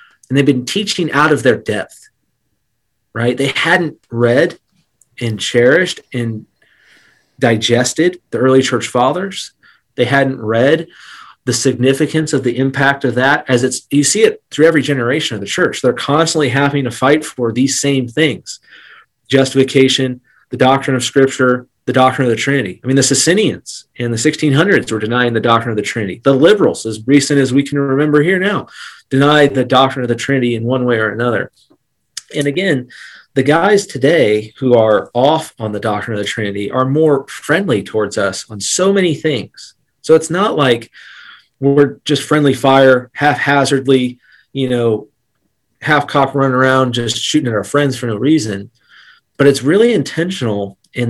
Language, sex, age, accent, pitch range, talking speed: English, male, 30-49, American, 120-145 Hz, 170 wpm